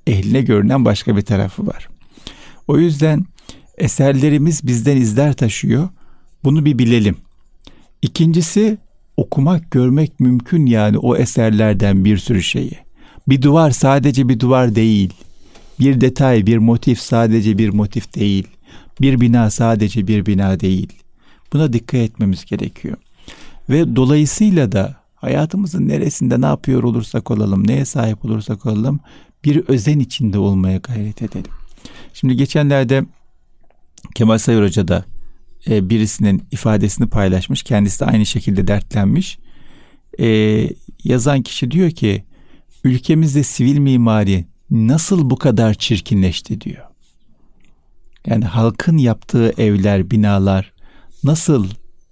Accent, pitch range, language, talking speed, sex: native, 105-140 Hz, Turkish, 115 wpm, male